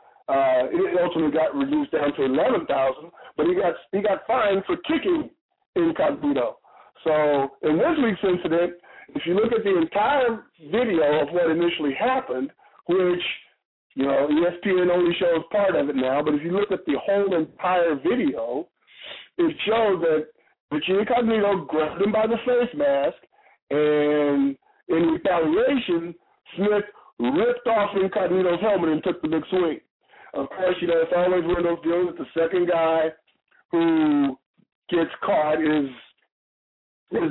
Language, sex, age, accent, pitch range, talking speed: English, male, 50-69, American, 155-220 Hz, 155 wpm